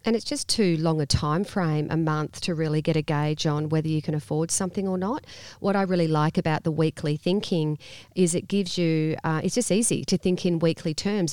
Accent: Australian